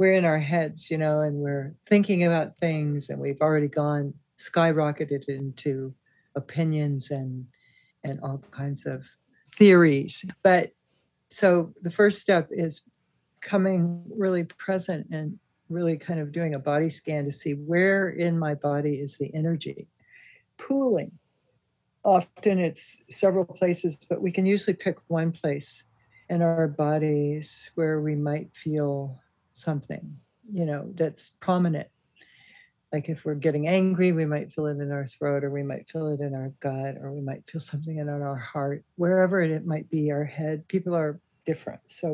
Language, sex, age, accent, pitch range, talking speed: English, female, 60-79, American, 145-180 Hz, 160 wpm